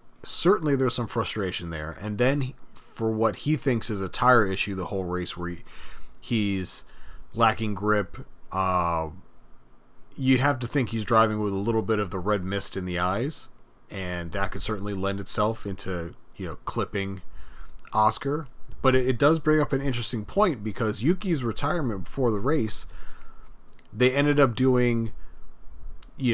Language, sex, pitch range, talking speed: English, male, 95-120 Hz, 165 wpm